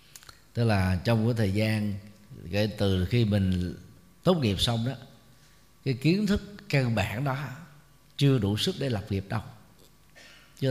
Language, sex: Vietnamese, male